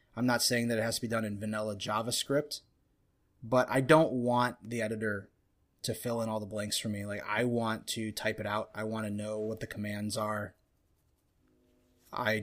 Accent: American